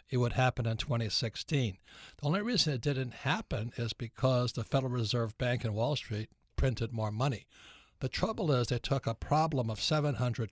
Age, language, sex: 60-79, English, male